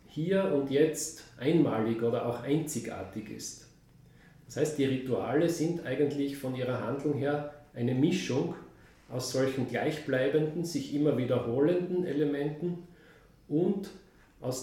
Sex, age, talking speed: male, 40-59, 120 wpm